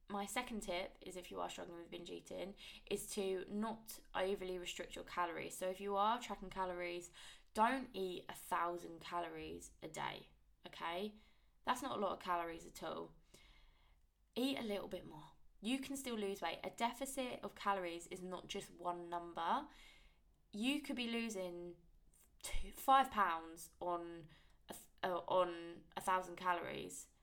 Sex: female